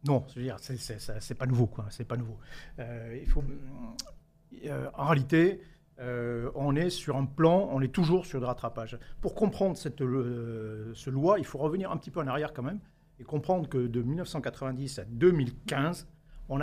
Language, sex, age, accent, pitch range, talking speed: French, male, 50-69, French, 120-160 Hz, 190 wpm